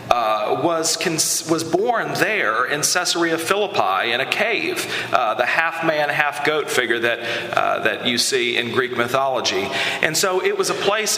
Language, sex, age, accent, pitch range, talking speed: English, male, 40-59, American, 140-220 Hz, 165 wpm